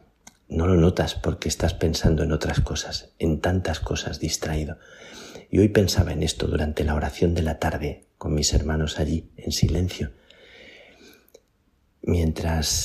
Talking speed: 145 wpm